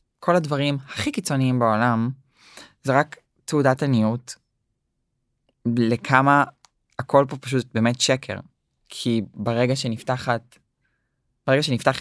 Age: 20-39